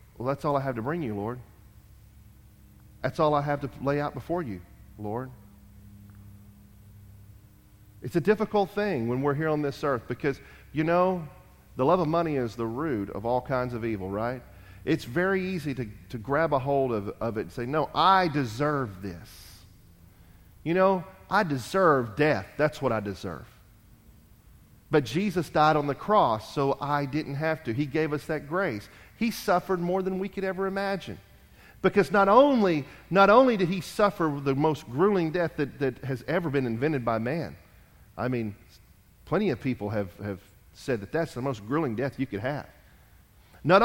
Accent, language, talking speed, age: American, English, 180 wpm, 40-59